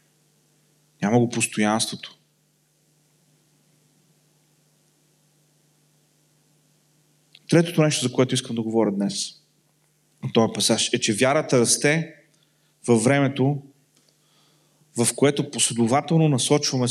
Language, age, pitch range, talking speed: Bulgarian, 40-59, 130-155 Hz, 85 wpm